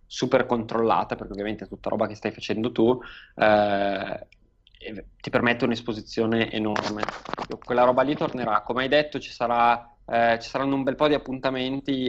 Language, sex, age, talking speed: Italian, male, 20-39, 165 wpm